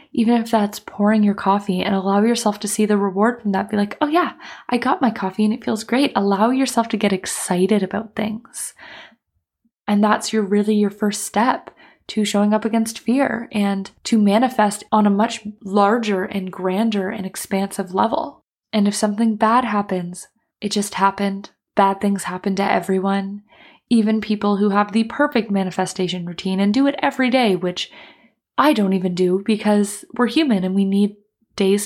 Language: English